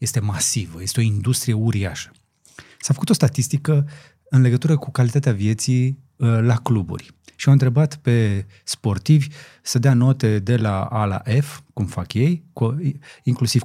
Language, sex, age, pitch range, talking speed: Romanian, male, 20-39, 105-135 Hz, 160 wpm